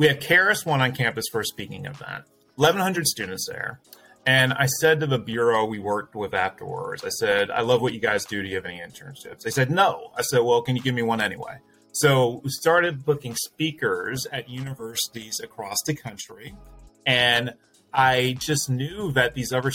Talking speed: 200 wpm